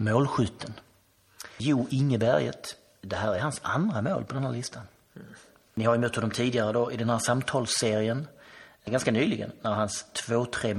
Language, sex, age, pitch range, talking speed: Swedish, male, 30-49, 105-125 Hz, 160 wpm